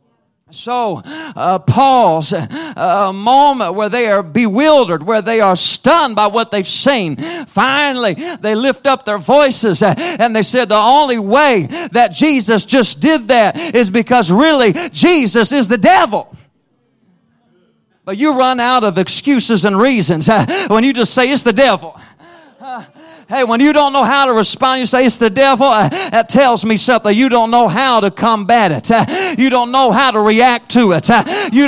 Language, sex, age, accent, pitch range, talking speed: English, male, 40-59, American, 200-260 Hz, 180 wpm